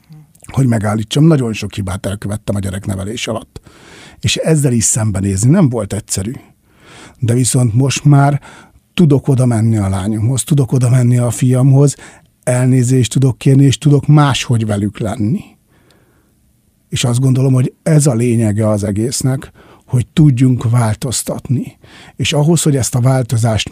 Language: Hungarian